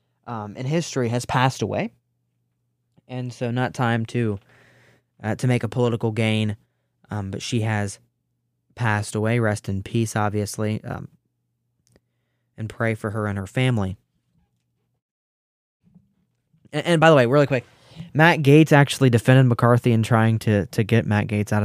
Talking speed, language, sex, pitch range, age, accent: 150 wpm, English, male, 110-130 Hz, 20-39, American